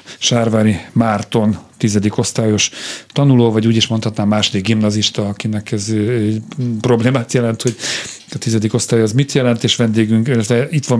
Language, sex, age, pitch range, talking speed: Hungarian, male, 40-59, 115-135 Hz, 135 wpm